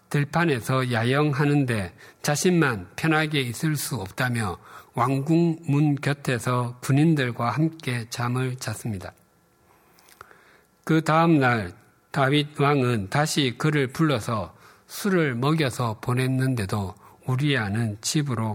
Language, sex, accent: Korean, male, native